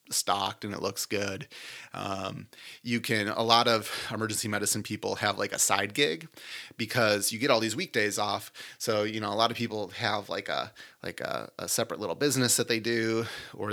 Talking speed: 200 wpm